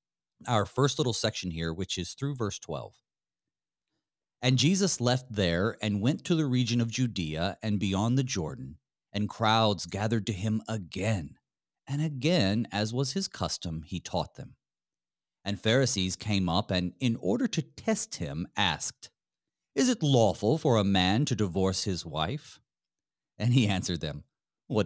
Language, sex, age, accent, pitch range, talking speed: English, male, 40-59, American, 95-130 Hz, 160 wpm